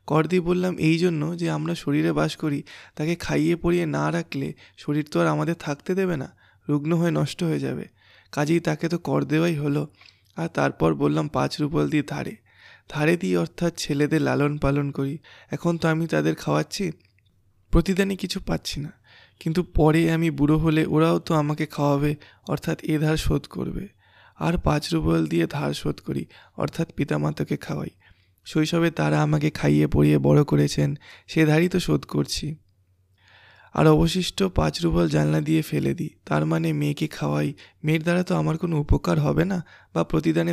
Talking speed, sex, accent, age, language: 125 wpm, male, native, 20-39, Bengali